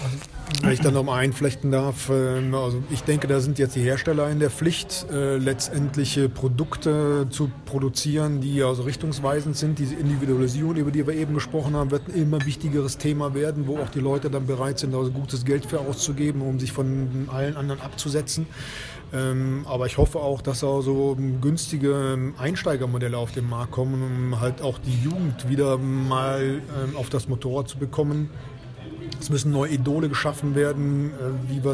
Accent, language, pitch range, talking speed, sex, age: German, German, 130-145 Hz, 170 wpm, male, 30-49